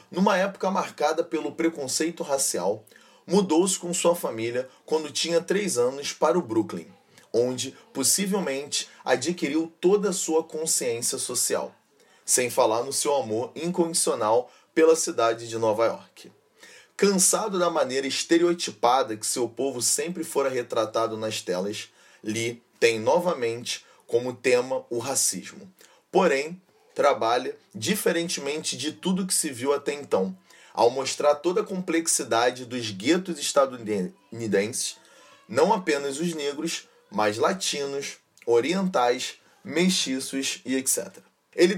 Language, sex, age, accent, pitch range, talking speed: Portuguese, male, 30-49, Brazilian, 130-175 Hz, 120 wpm